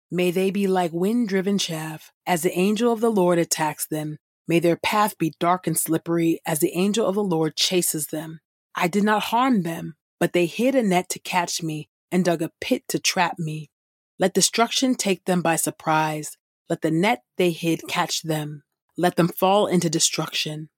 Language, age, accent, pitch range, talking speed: English, 30-49, American, 160-195 Hz, 195 wpm